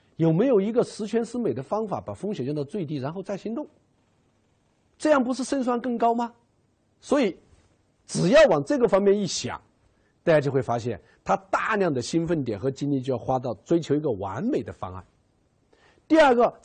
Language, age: Chinese, 50-69